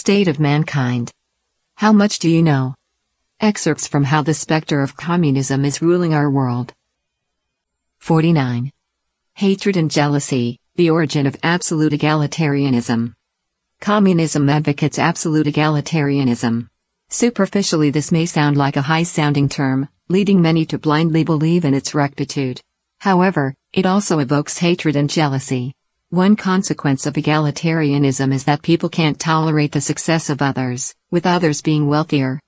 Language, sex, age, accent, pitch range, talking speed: English, female, 50-69, American, 140-170 Hz, 135 wpm